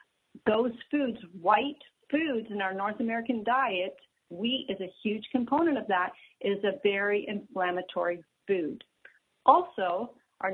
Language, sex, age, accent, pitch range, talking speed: English, female, 40-59, American, 185-245 Hz, 130 wpm